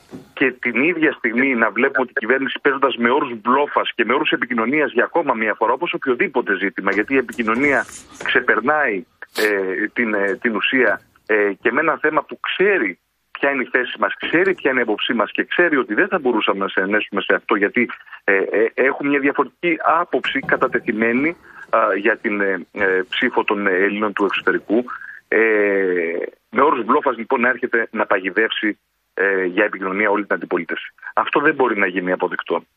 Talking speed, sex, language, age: 165 wpm, male, Greek, 40-59